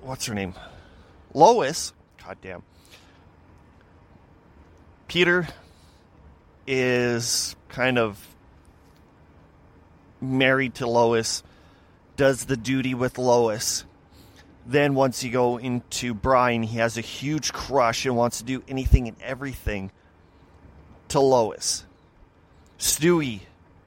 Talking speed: 100 wpm